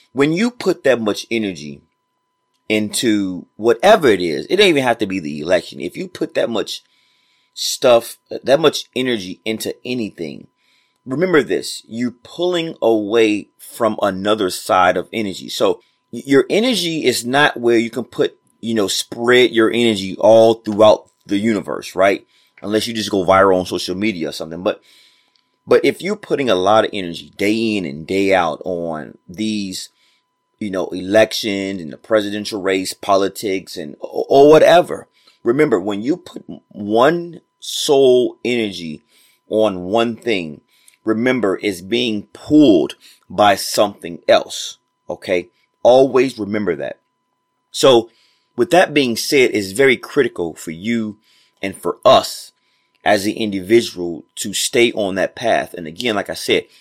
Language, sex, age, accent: English, male, 30-49, American